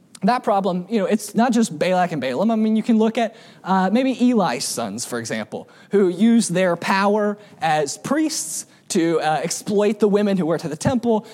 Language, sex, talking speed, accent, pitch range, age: English, male, 200 wpm, American, 195-250 Hz, 20-39